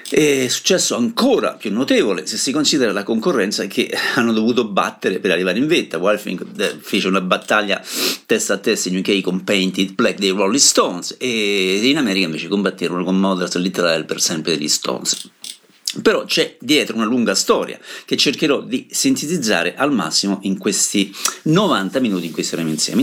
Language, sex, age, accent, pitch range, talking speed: Italian, male, 50-69, native, 95-145 Hz, 170 wpm